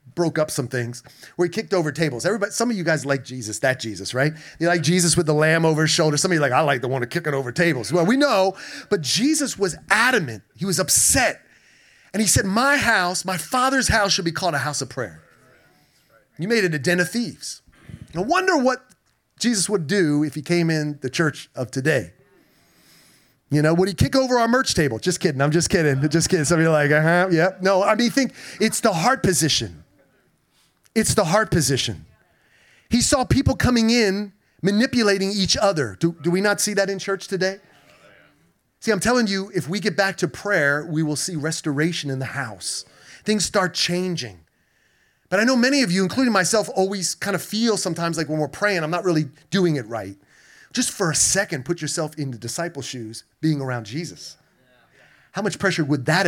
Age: 30-49